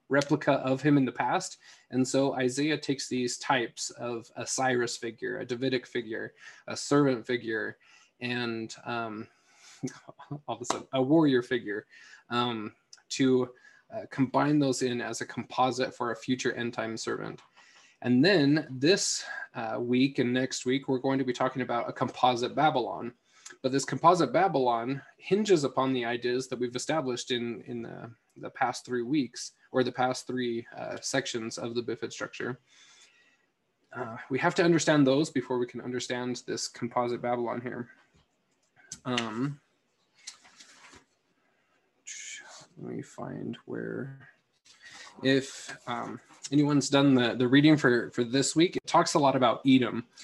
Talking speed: 150 wpm